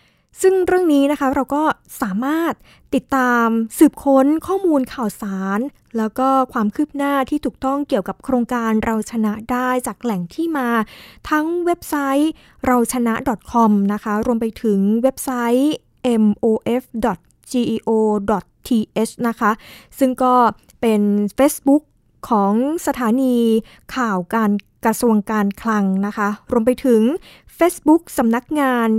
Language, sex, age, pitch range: Thai, female, 20-39, 215-260 Hz